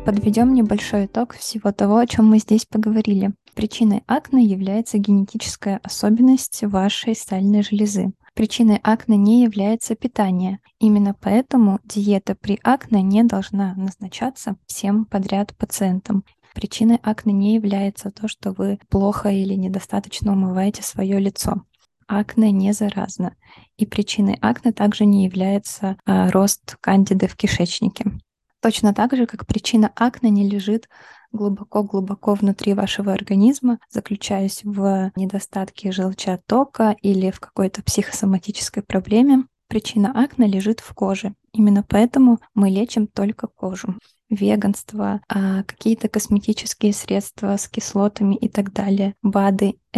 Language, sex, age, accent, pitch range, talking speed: Russian, female, 20-39, native, 195-220 Hz, 125 wpm